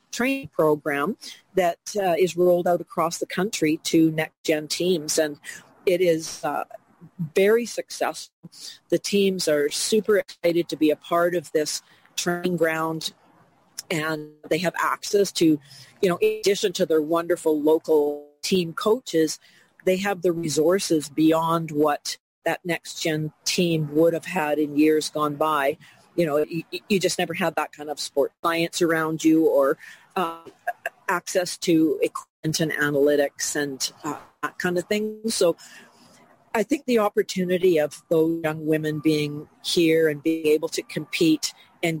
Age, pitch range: 40-59, 155-180 Hz